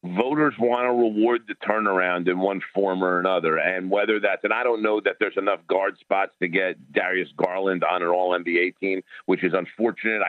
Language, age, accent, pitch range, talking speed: English, 50-69, American, 90-110 Hz, 205 wpm